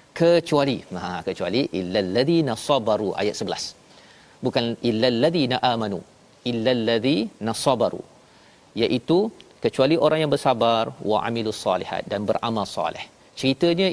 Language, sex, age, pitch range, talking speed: Malayalam, male, 40-59, 120-150 Hz, 75 wpm